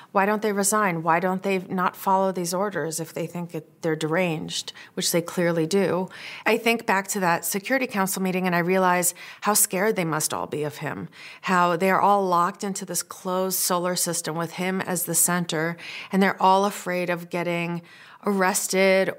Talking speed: 195 wpm